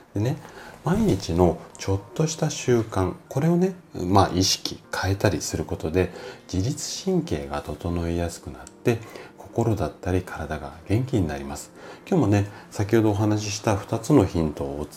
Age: 40-59